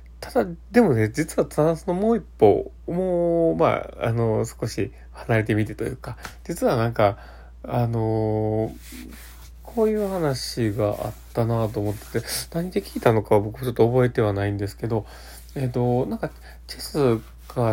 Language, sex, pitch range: Japanese, male, 100-130 Hz